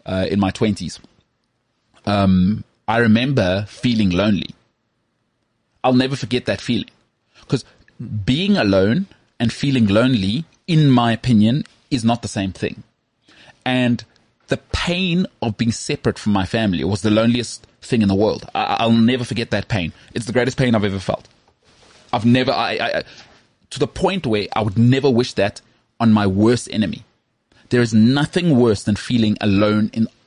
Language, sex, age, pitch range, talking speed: English, male, 30-49, 105-125 Hz, 160 wpm